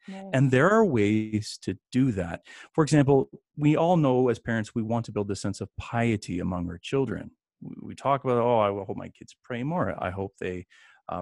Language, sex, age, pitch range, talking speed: English, male, 30-49, 105-135 Hz, 210 wpm